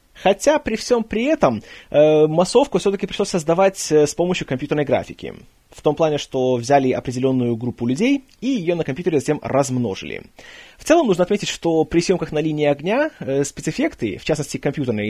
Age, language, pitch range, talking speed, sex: 20-39, Russian, 135-190 Hz, 170 wpm, male